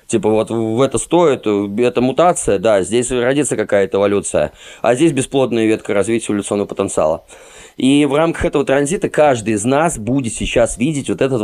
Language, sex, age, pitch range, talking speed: Russian, male, 20-39, 110-140 Hz, 170 wpm